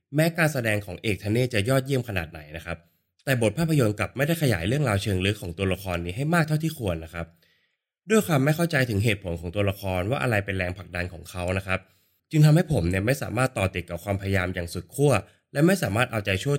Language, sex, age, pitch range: Thai, male, 20-39, 85-125 Hz